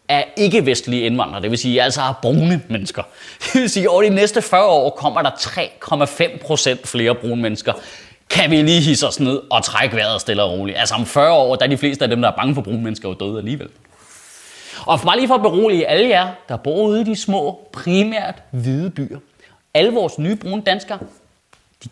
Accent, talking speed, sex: native, 215 wpm, male